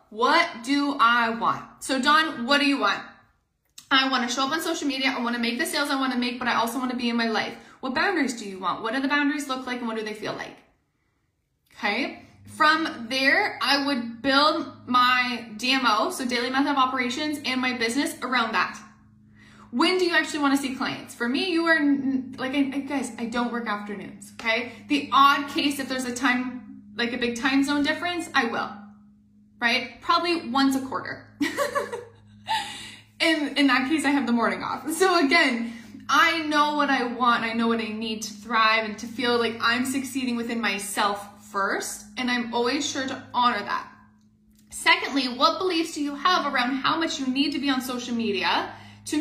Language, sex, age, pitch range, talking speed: English, female, 20-39, 235-285 Hz, 200 wpm